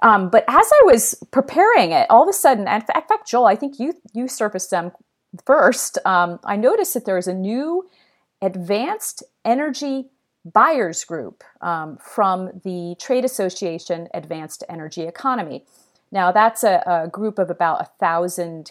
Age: 40-59